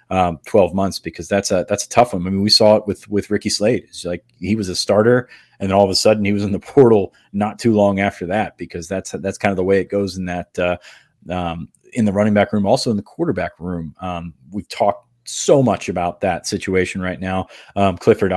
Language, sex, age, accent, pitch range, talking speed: English, male, 30-49, American, 90-100 Hz, 250 wpm